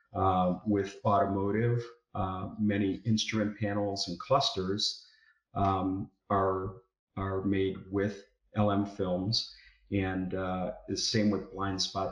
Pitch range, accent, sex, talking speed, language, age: 95-110 Hz, American, male, 115 wpm, English, 40-59